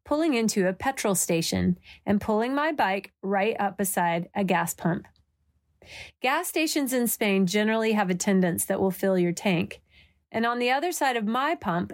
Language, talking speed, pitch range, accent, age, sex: English, 175 wpm, 185-230 Hz, American, 30-49, female